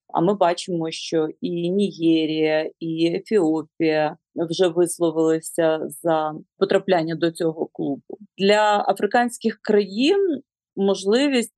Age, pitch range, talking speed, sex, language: 30-49, 170-210 Hz, 100 wpm, female, Ukrainian